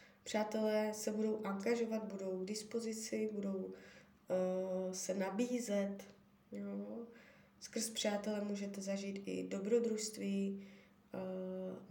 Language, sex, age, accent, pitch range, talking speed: Czech, female, 20-39, native, 195-225 Hz, 95 wpm